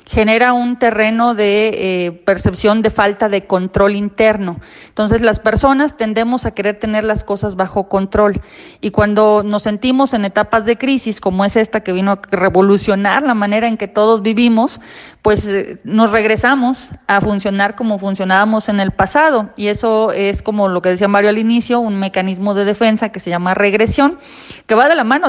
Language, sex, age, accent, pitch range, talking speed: Spanish, female, 40-59, Mexican, 200-230 Hz, 185 wpm